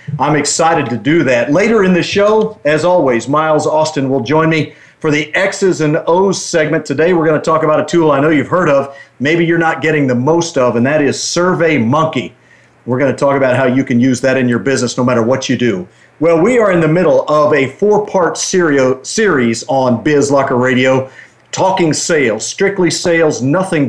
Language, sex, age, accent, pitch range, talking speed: English, male, 50-69, American, 135-165 Hz, 210 wpm